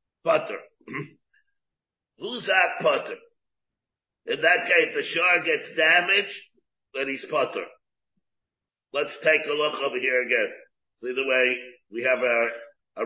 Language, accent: English, American